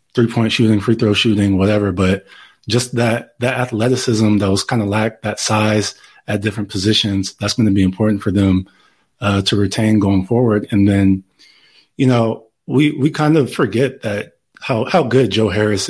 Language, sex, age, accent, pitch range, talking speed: English, male, 20-39, American, 95-110 Hz, 185 wpm